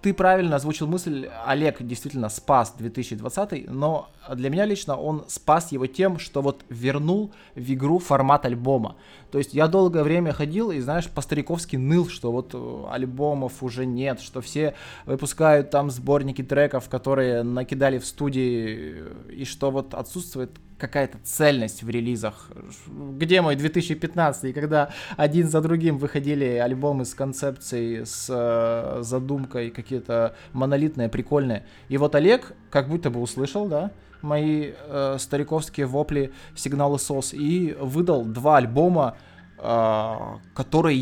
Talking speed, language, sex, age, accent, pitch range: 135 wpm, Russian, male, 20-39, native, 125-155 Hz